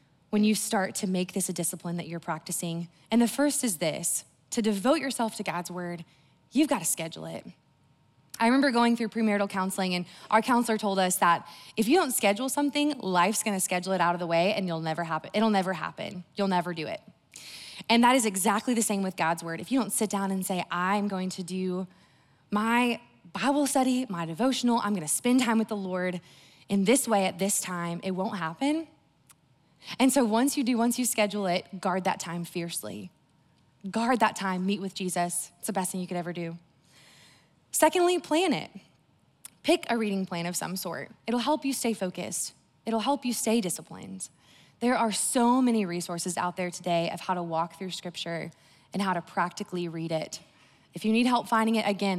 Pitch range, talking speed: 170-225 Hz, 205 wpm